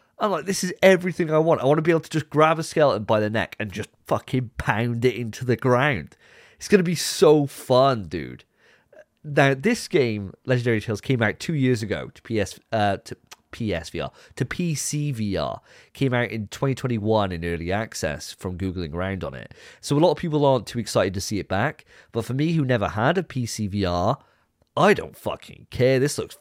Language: English